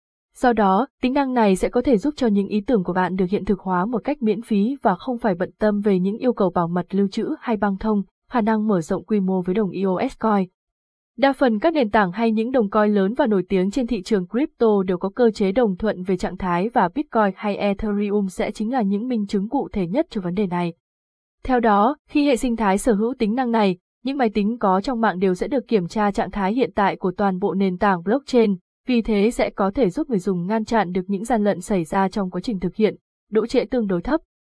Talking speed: 260 wpm